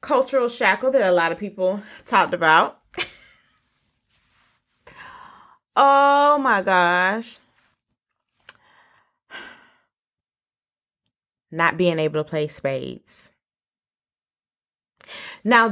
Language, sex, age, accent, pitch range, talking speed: English, female, 20-39, American, 190-275 Hz, 75 wpm